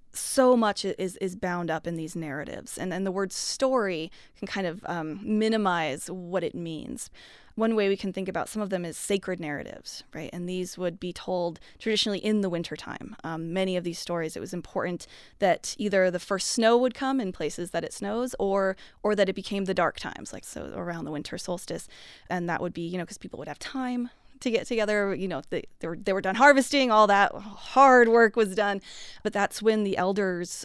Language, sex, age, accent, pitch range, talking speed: English, female, 20-39, American, 175-200 Hz, 220 wpm